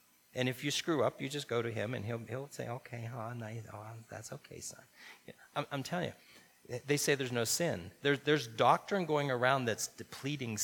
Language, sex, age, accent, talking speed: English, male, 30-49, American, 210 wpm